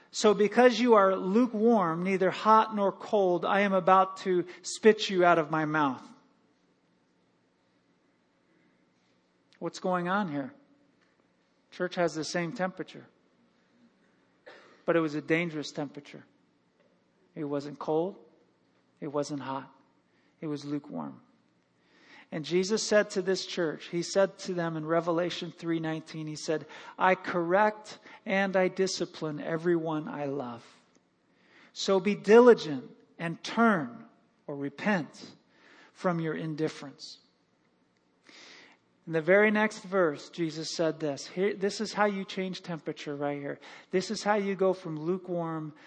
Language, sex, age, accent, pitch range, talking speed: English, male, 40-59, American, 155-195 Hz, 130 wpm